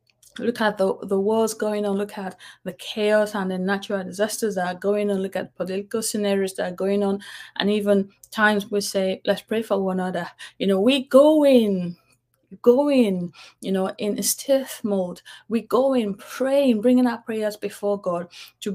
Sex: female